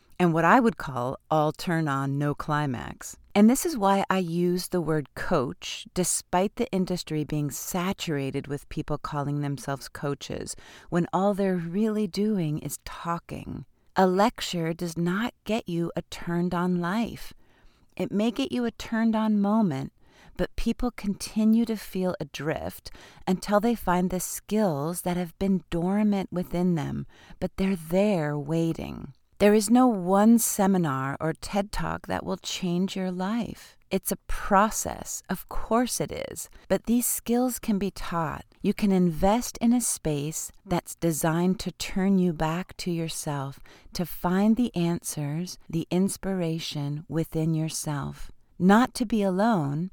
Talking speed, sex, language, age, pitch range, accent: 155 wpm, female, English, 40-59, 160-200 Hz, American